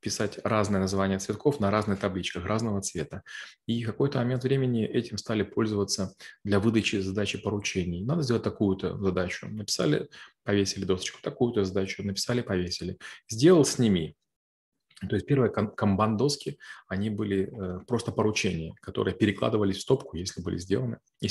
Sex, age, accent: male, 20-39, native